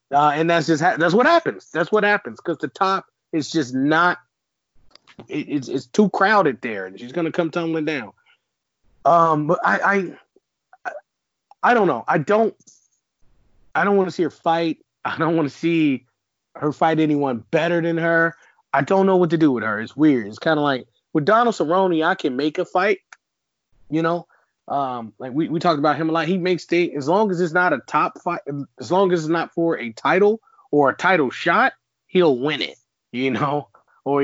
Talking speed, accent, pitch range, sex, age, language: 210 wpm, American, 140-180 Hz, male, 30-49, English